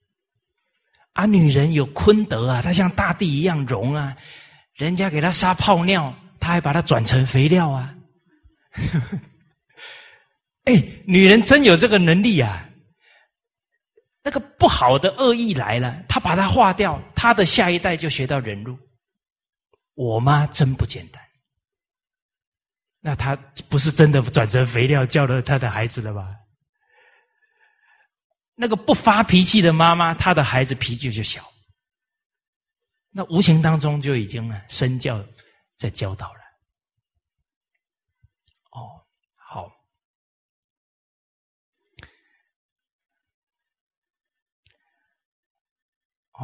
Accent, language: native, Chinese